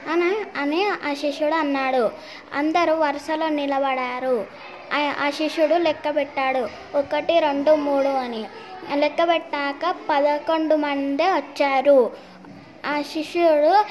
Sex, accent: female, native